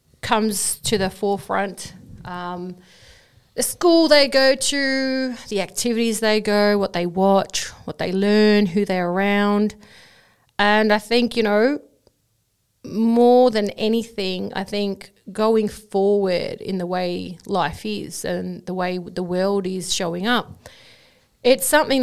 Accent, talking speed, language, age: Australian, 135 wpm, English, 40-59